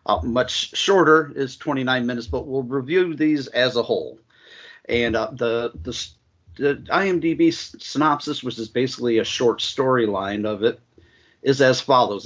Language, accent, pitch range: English, American, 115-135 Hz